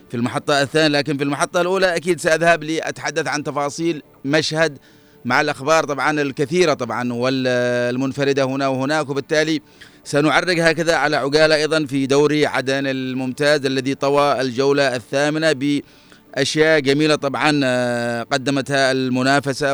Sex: male